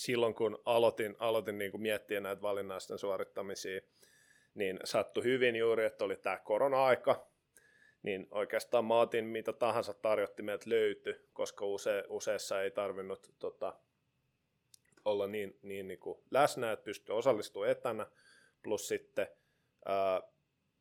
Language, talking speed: Finnish, 125 wpm